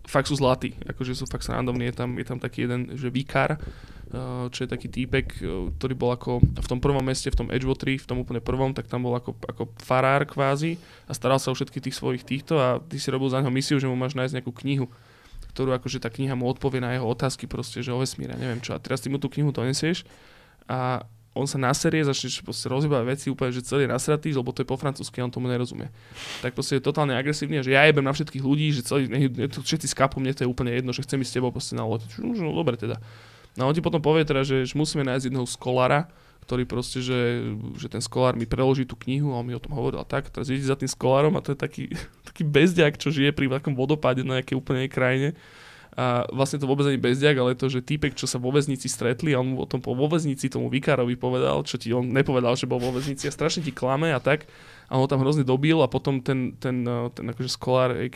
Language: Slovak